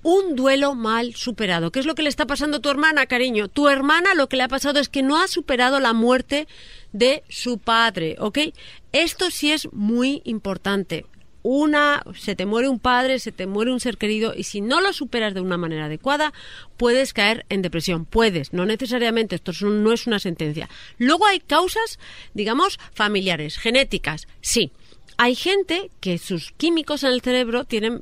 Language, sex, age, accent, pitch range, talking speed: Spanish, female, 40-59, Spanish, 210-285 Hz, 190 wpm